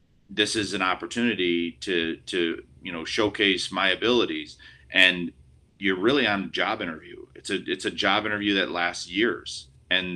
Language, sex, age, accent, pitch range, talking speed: English, male, 30-49, American, 85-105 Hz, 160 wpm